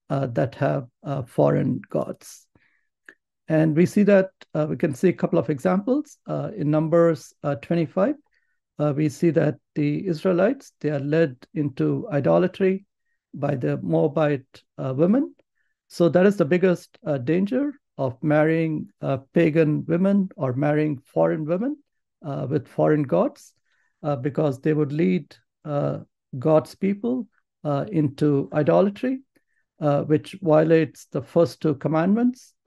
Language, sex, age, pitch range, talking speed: English, male, 60-79, 145-180 Hz, 140 wpm